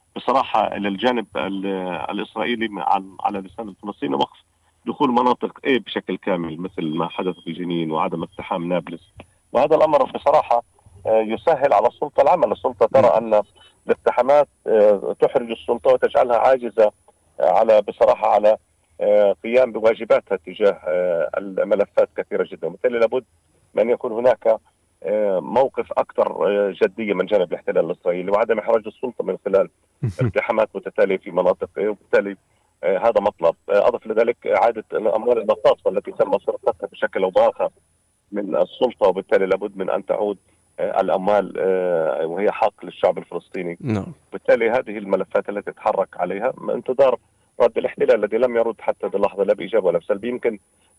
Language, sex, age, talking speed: Arabic, male, 40-59, 130 wpm